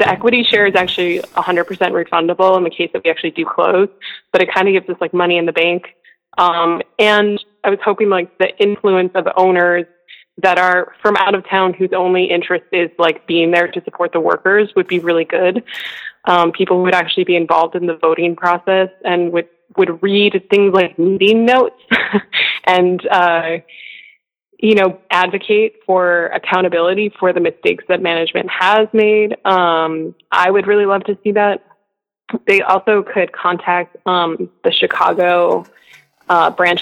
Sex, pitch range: female, 175-200 Hz